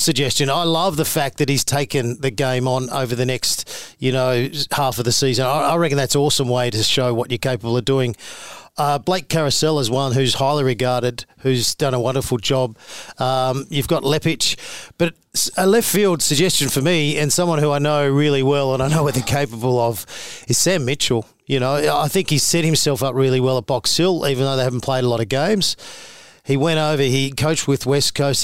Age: 40-59